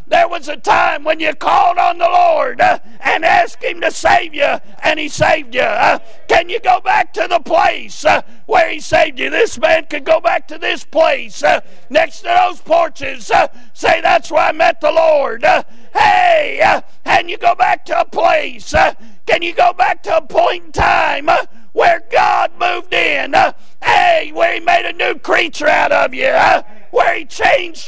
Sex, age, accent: male, 50-69, American